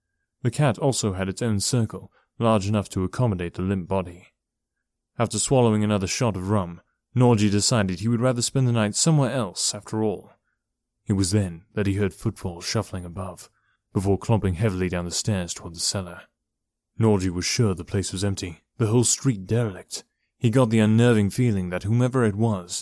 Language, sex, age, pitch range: English, male, 30-49, 95-120 Hz